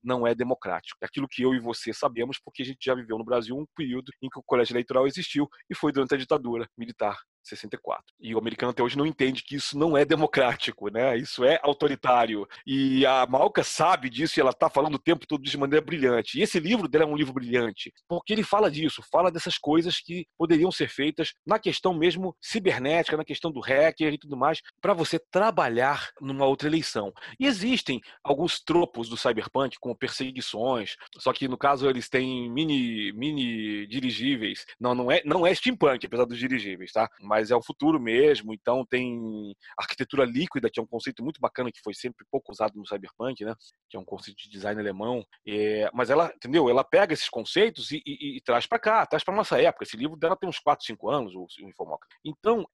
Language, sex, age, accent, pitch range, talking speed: Portuguese, male, 40-59, Brazilian, 115-155 Hz, 210 wpm